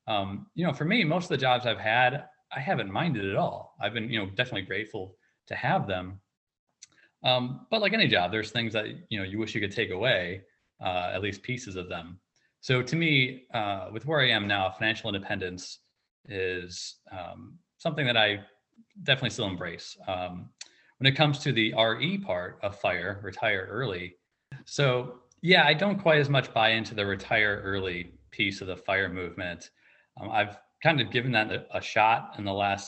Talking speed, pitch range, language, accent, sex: 190 wpm, 100-125 Hz, English, American, male